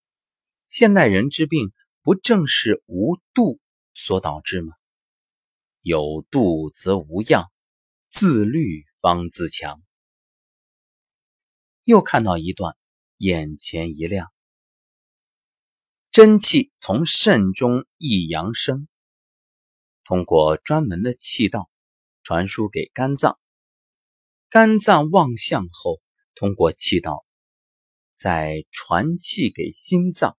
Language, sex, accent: Chinese, male, native